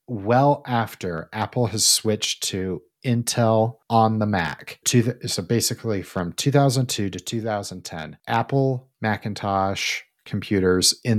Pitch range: 95-115 Hz